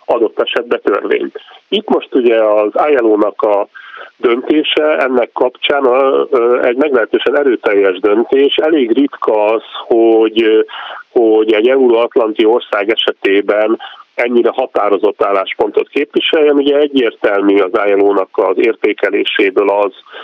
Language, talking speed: Hungarian, 110 wpm